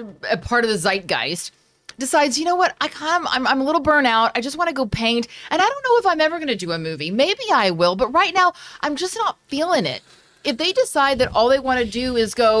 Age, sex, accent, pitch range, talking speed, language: 30-49, female, American, 205-275 Hz, 270 wpm, English